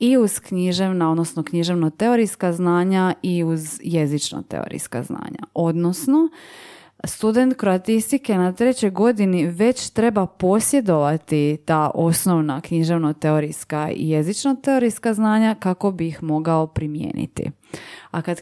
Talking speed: 105 wpm